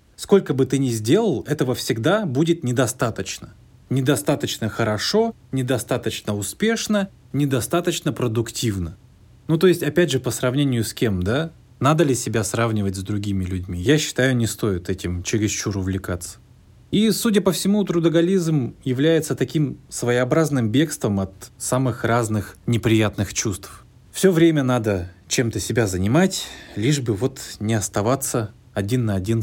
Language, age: Russian, 20-39